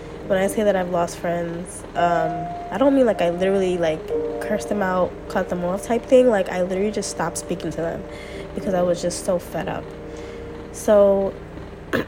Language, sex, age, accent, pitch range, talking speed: English, female, 20-39, American, 175-210 Hz, 195 wpm